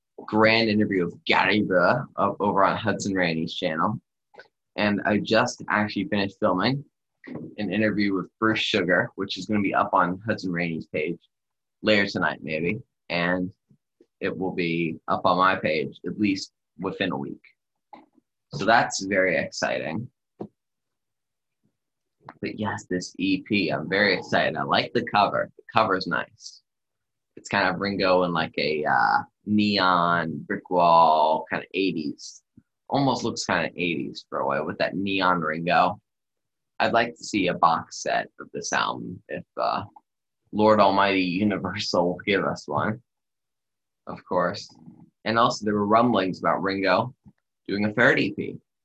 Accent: American